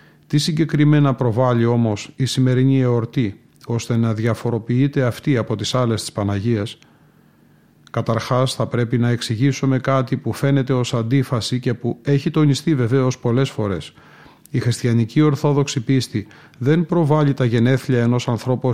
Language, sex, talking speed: Greek, male, 140 wpm